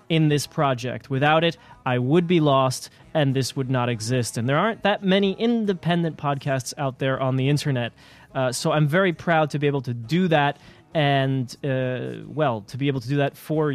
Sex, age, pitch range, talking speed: male, 30-49, 125-170 Hz, 205 wpm